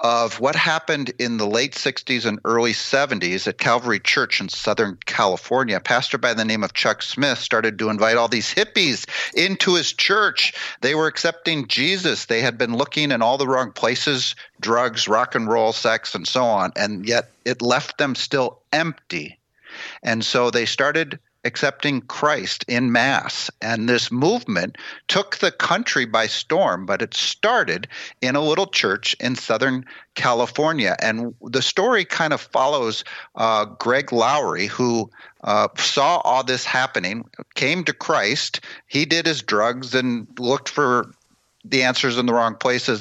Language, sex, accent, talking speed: English, male, American, 165 wpm